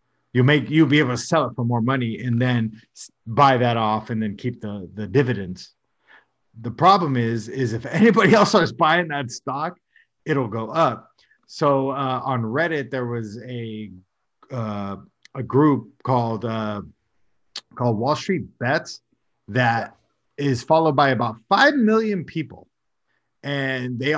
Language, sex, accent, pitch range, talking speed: English, male, American, 115-140 Hz, 155 wpm